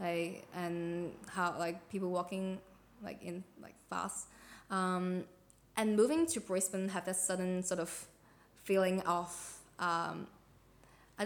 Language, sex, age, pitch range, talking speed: English, female, 20-39, 170-190 Hz, 130 wpm